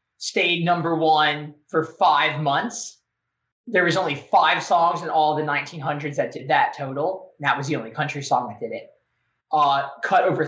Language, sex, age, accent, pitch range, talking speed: English, male, 20-39, American, 140-170 Hz, 180 wpm